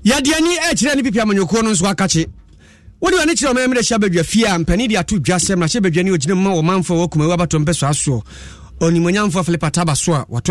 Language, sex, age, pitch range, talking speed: English, male, 30-49, 160-215 Hz, 205 wpm